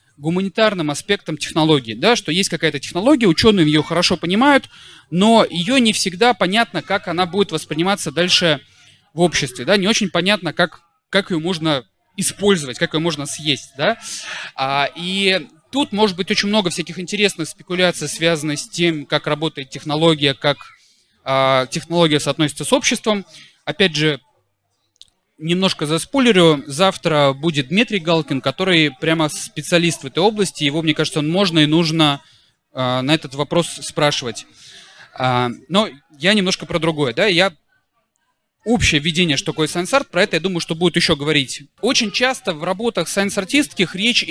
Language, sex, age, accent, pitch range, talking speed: Russian, male, 20-39, native, 150-195 Hz, 145 wpm